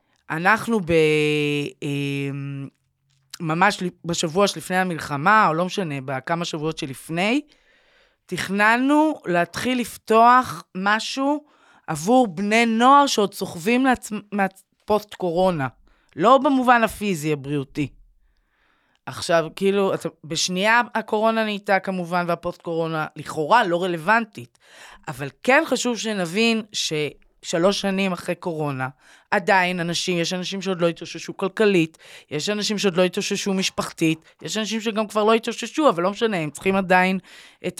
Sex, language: female, Hebrew